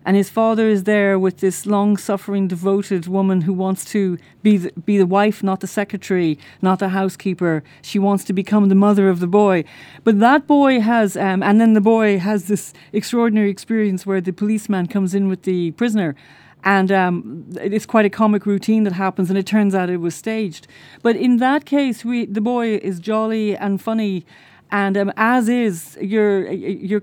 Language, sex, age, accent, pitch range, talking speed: English, female, 40-59, Irish, 190-225 Hz, 190 wpm